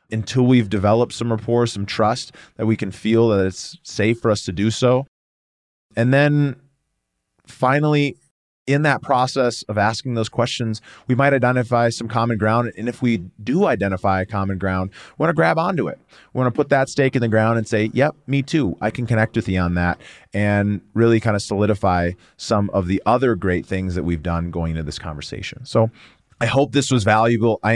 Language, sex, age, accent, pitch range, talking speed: English, male, 30-49, American, 100-130 Hz, 200 wpm